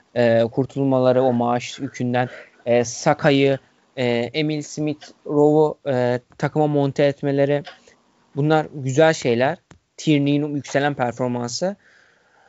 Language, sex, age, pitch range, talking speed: Turkish, male, 20-39, 130-165 Hz, 80 wpm